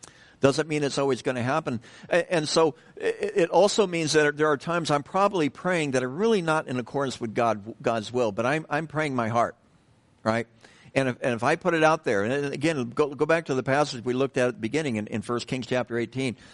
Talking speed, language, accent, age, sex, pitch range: 235 wpm, English, American, 60-79, male, 120-160 Hz